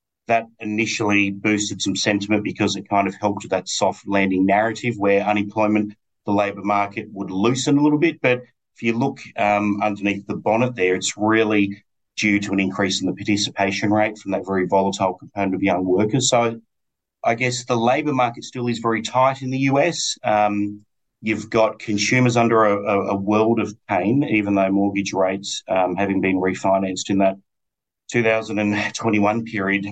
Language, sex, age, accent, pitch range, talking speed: English, male, 30-49, Australian, 95-115 Hz, 175 wpm